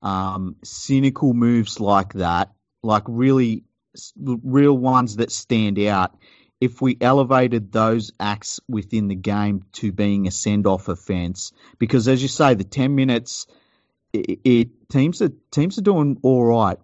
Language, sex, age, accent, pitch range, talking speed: English, male, 40-59, Australian, 100-120 Hz, 150 wpm